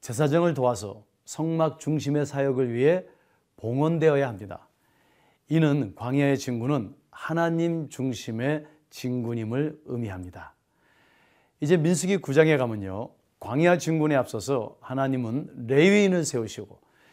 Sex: male